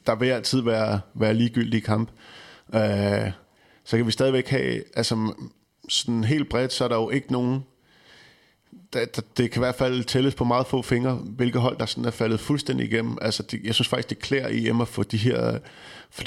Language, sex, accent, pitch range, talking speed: Danish, male, native, 110-130 Hz, 210 wpm